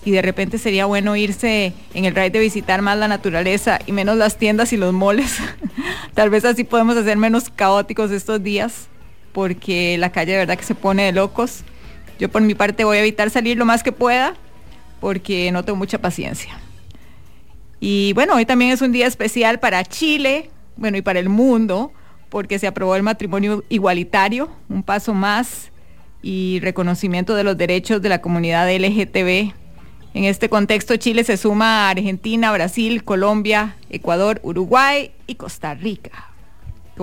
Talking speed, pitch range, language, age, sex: 170 wpm, 190-235 Hz, English, 30-49, female